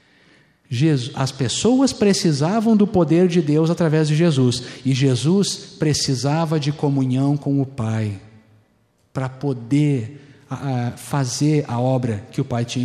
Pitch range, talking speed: 130-185 Hz, 125 wpm